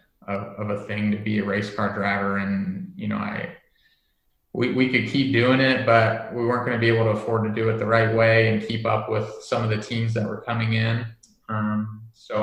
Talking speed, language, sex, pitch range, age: 230 wpm, English, male, 105-115 Hz, 20-39